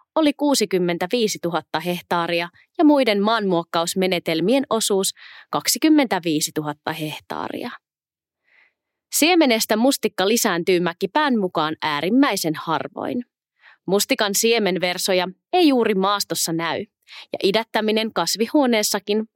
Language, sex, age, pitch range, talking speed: Finnish, female, 20-39, 170-250 Hz, 85 wpm